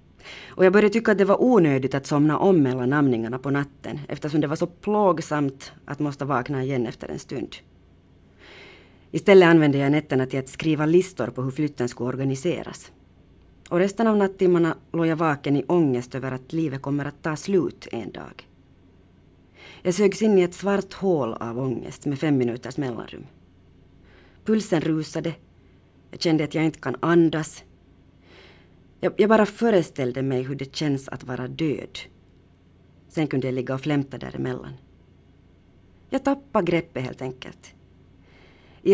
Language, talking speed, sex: Finnish, 160 wpm, female